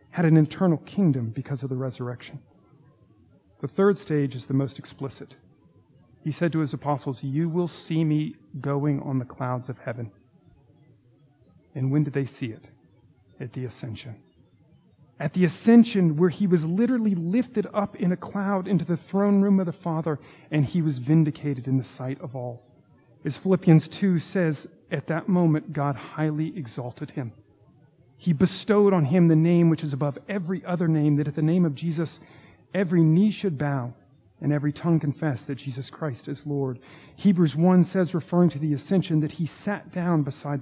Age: 40-59